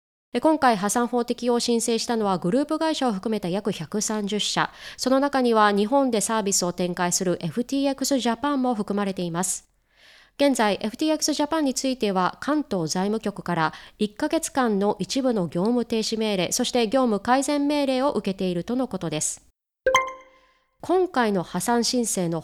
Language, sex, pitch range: Japanese, female, 190-265 Hz